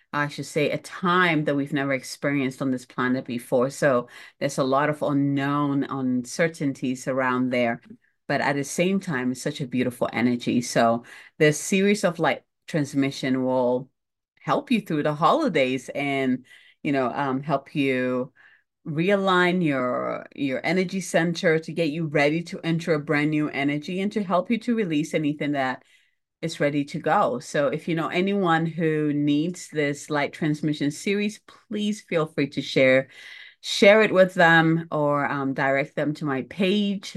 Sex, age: female, 30-49